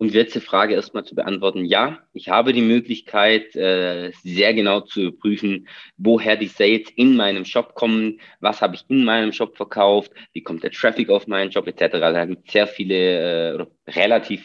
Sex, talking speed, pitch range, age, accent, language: male, 185 wpm, 90-110 Hz, 30-49, German, German